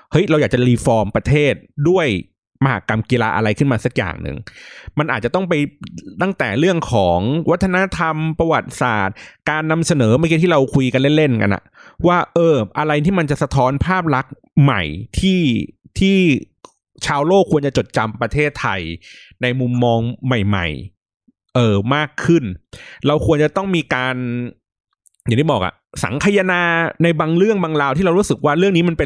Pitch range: 115-160 Hz